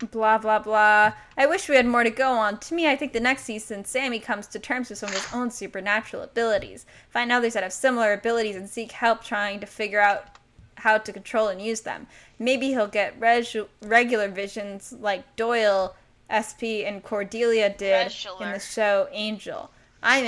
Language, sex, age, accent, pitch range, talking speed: English, female, 10-29, American, 210-255 Hz, 190 wpm